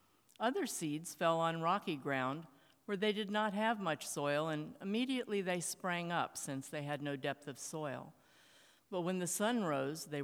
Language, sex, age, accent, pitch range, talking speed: English, female, 50-69, American, 145-205 Hz, 180 wpm